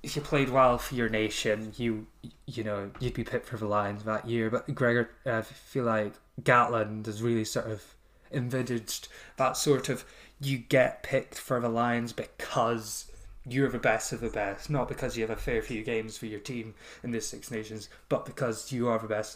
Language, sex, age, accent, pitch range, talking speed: English, male, 10-29, British, 105-125 Hz, 210 wpm